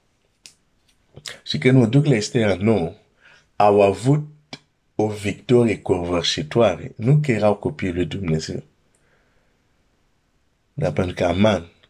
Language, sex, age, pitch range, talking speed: Romanian, male, 50-69, 100-130 Hz, 115 wpm